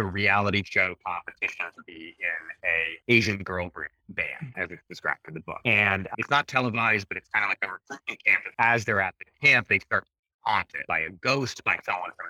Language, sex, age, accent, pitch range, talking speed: English, male, 30-49, American, 100-135 Hz, 210 wpm